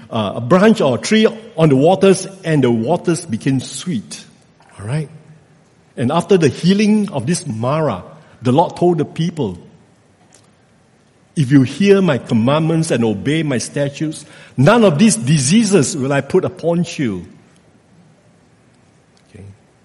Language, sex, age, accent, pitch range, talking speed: English, male, 60-79, Malaysian, 125-190 Hz, 135 wpm